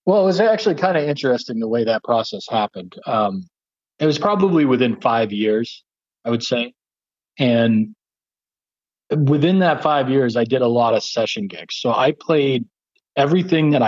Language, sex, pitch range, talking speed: English, male, 110-145 Hz, 170 wpm